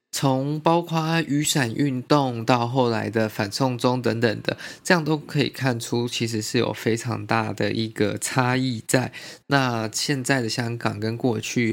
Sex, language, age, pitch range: male, Chinese, 20-39, 110-135 Hz